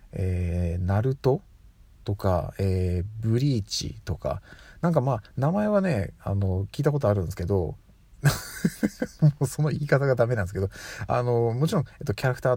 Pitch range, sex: 95-145 Hz, male